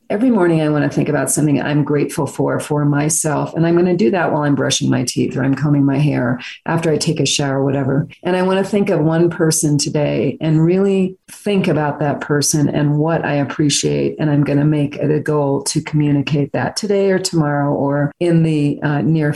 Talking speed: 230 wpm